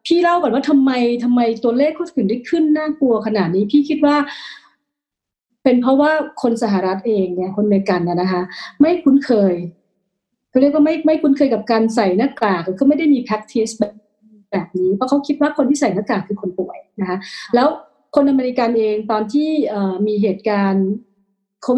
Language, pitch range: Thai, 200-275 Hz